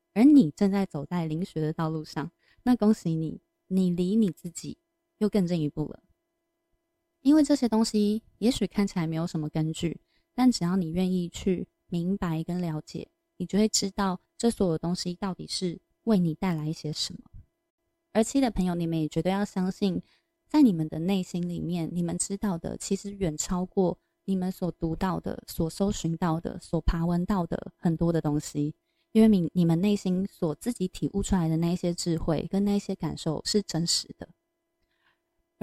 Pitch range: 165-210 Hz